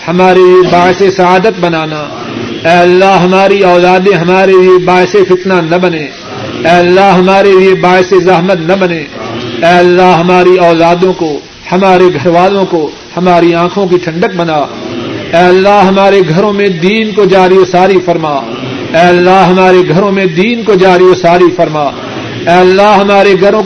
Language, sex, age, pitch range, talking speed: Urdu, male, 50-69, 175-195 Hz, 155 wpm